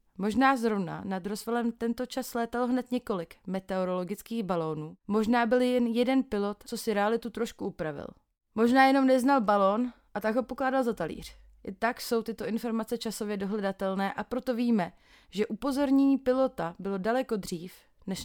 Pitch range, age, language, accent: 190-245 Hz, 30-49, Czech, native